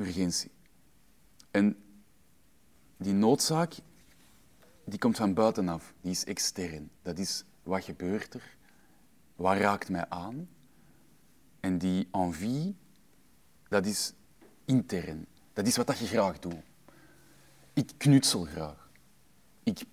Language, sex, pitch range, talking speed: Dutch, male, 85-105 Hz, 110 wpm